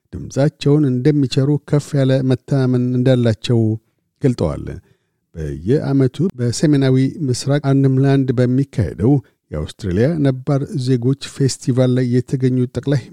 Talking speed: 80 wpm